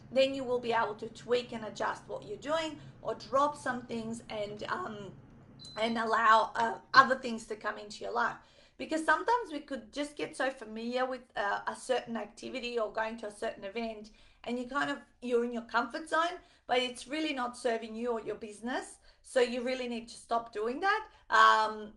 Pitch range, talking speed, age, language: 215-260 Hz, 200 wpm, 40-59, English